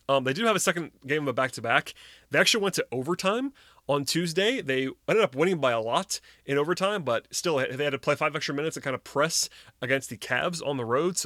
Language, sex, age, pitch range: English, male, 30-49, 125-145 Hz